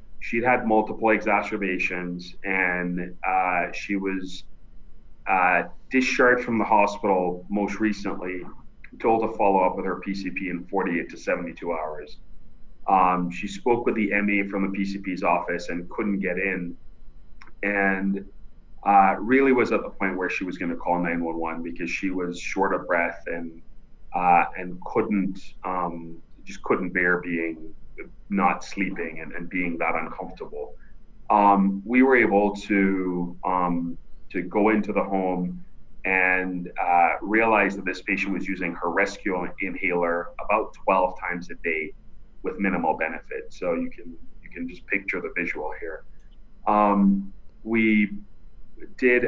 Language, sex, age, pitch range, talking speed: English, male, 30-49, 90-100 Hz, 145 wpm